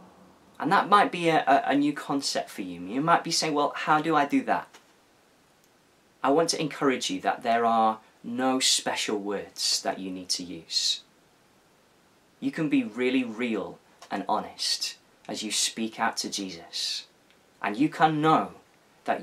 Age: 20-39